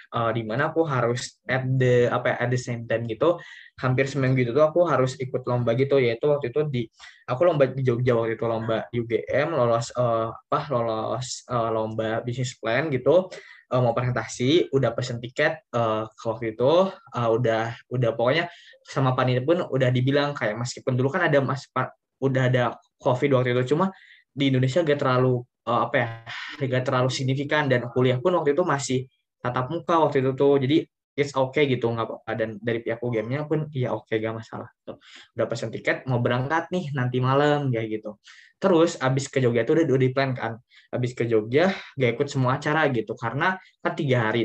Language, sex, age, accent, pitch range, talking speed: Indonesian, male, 10-29, native, 115-140 Hz, 190 wpm